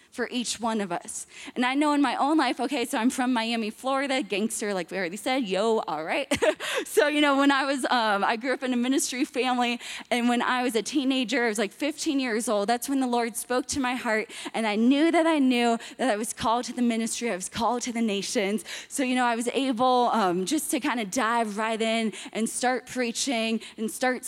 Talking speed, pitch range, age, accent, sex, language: 240 wpm, 230-300 Hz, 20-39, American, female, English